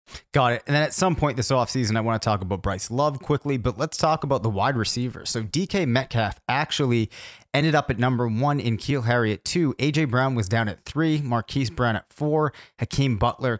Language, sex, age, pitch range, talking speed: English, male, 30-49, 105-130 Hz, 220 wpm